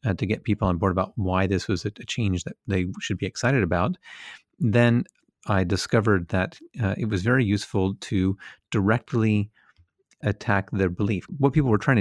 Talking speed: 180 wpm